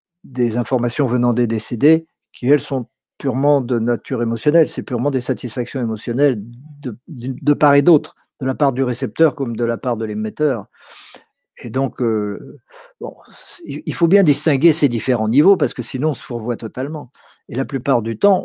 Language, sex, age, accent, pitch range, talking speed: French, male, 50-69, French, 120-155 Hz, 180 wpm